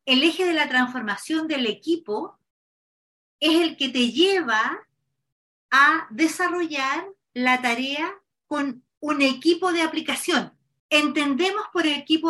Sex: female